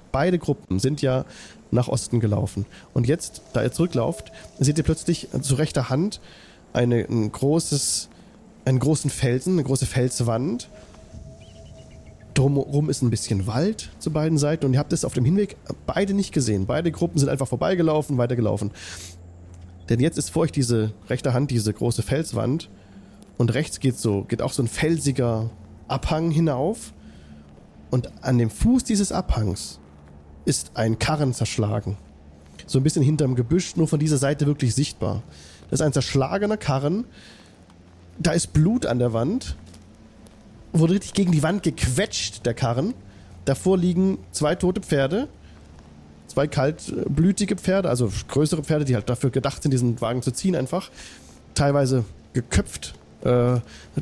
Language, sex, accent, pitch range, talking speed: German, male, German, 105-155 Hz, 150 wpm